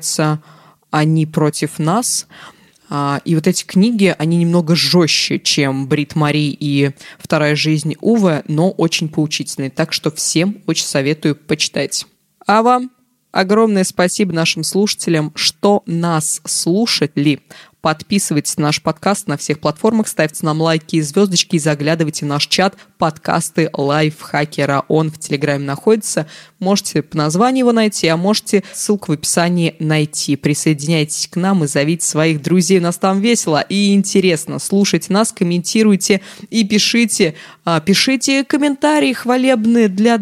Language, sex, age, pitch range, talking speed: Russian, female, 20-39, 155-205 Hz, 135 wpm